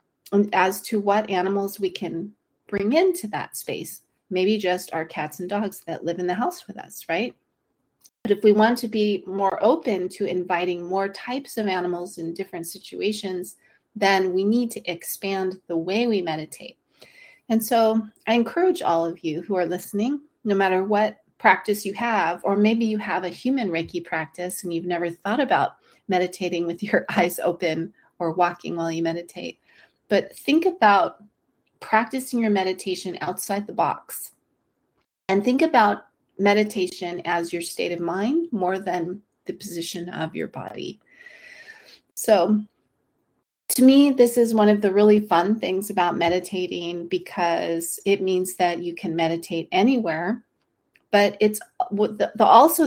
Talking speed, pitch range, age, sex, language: 160 wpm, 175-215 Hz, 30-49, female, English